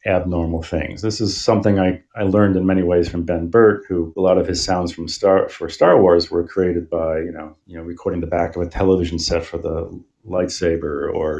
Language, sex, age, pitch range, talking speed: English, male, 40-59, 85-100 Hz, 225 wpm